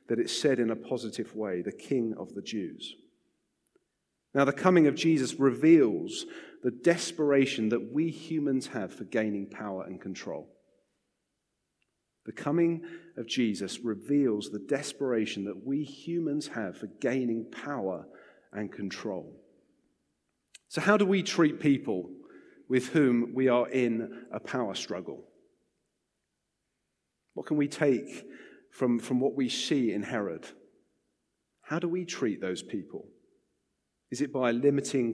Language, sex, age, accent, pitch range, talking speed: English, male, 40-59, British, 115-145 Hz, 135 wpm